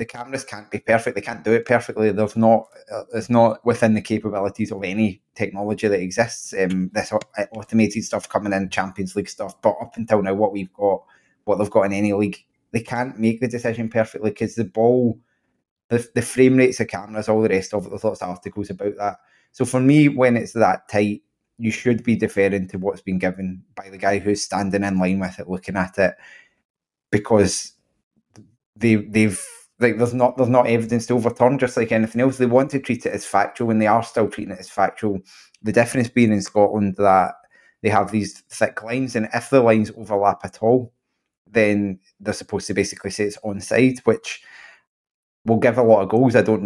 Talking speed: 205 wpm